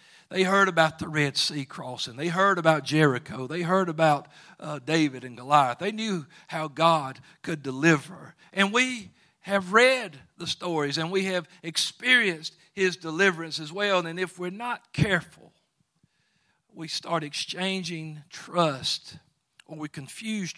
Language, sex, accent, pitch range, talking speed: English, male, American, 145-180 Hz, 145 wpm